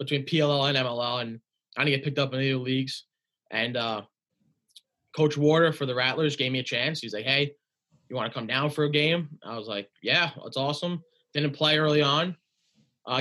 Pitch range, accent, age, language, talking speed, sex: 125-145 Hz, American, 20-39, English, 210 wpm, male